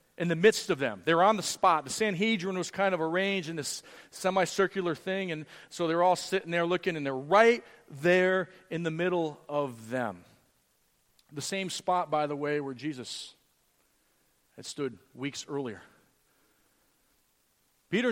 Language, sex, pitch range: English, male, 140-190 Hz